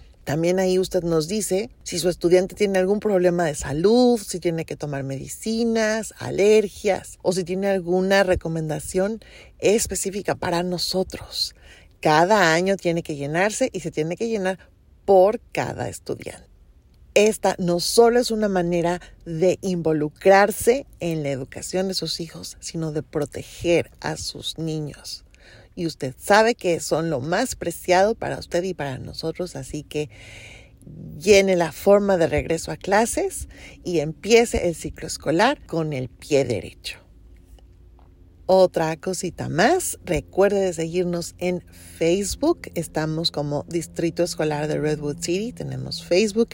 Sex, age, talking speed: female, 40-59, 140 wpm